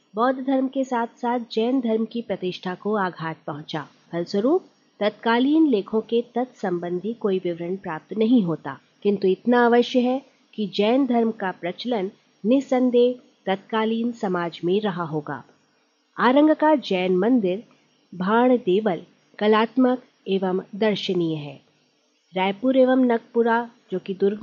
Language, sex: Hindi, female